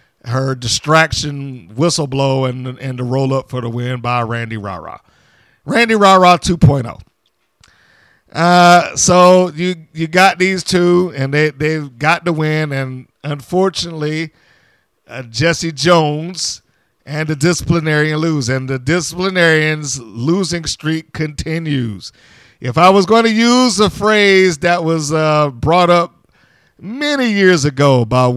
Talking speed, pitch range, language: 125 wpm, 130-175 Hz, English